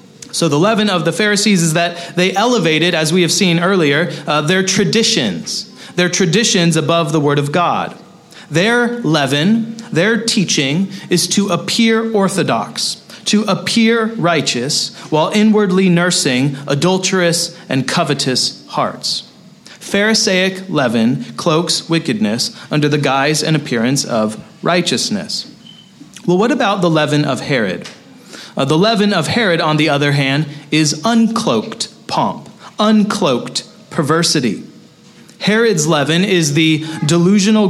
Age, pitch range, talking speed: 30-49, 160-210 Hz, 125 wpm